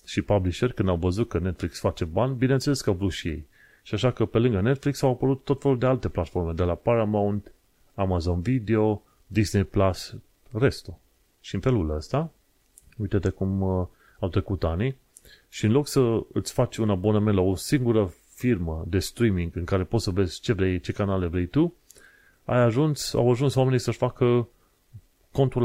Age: 30-49